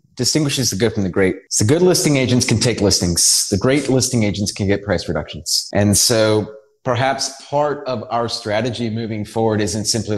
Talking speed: 190 wpm